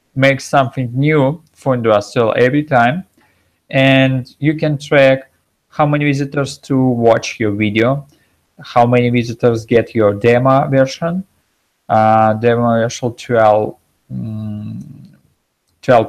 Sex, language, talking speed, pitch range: male, Russian, 120 wpm, 110-135 Hz